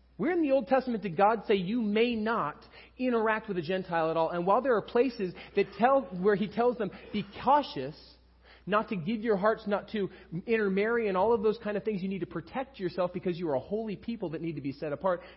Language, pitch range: English, 155-225 Hz